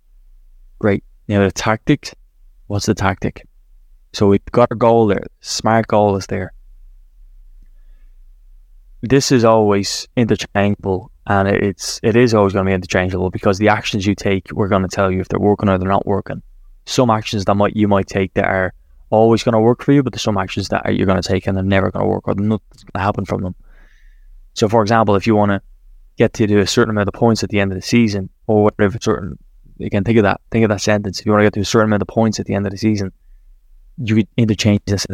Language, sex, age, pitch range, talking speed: English, male, 20-39, 95-110 Hz, 235 wpm